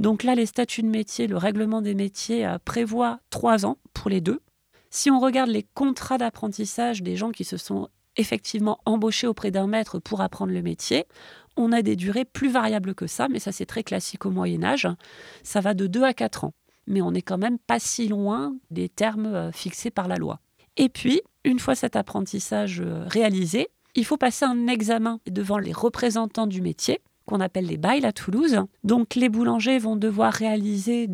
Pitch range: 195-245 Hz